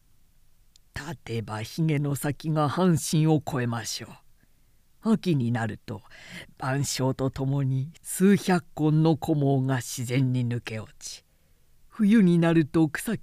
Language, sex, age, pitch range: Japanese, female, 50-69, 120-175 Hz